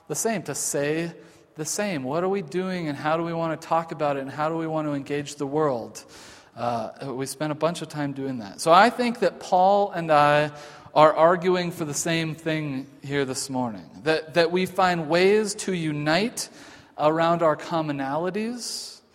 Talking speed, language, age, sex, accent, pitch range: 195 wpm, English, 40-59, male, American, 145-180 Hz